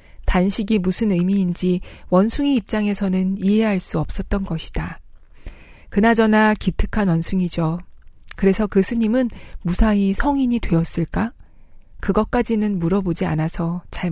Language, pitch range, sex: Korean, 175-220 Hz, female